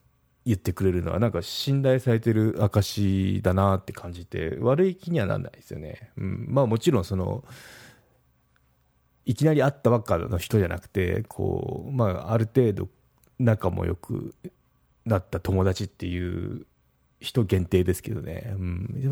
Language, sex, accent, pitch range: Japanese, male, native, 95-120 Hz